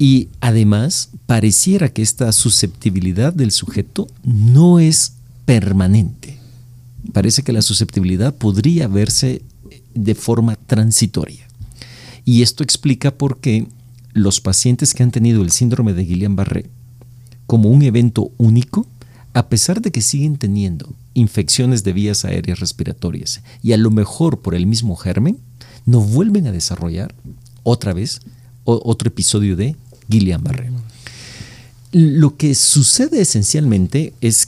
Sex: male